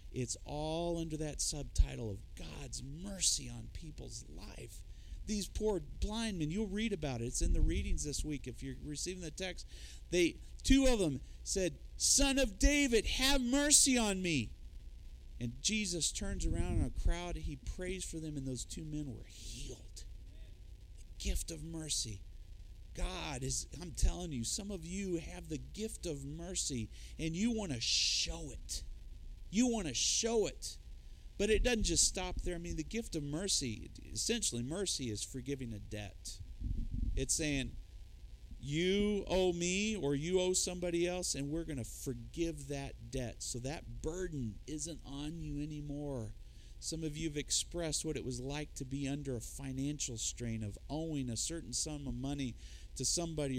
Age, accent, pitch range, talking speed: 40-59, American, 110-175 Hz, 170 wpm